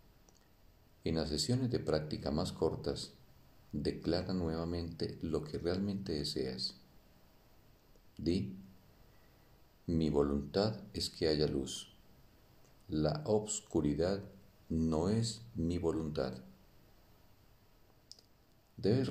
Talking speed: 85 wpm